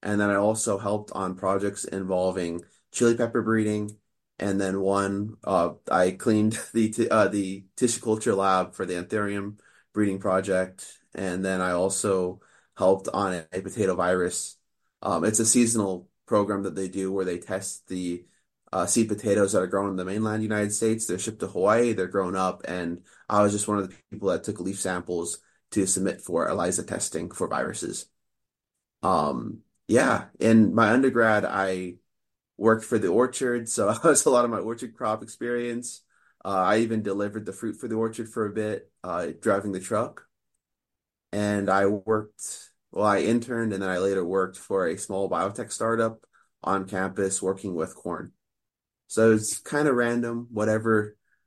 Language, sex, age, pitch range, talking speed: English, male, 20-39, 95-110 Hz, 175 wpm